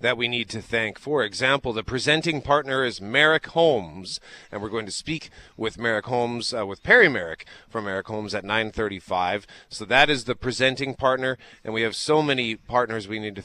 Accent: American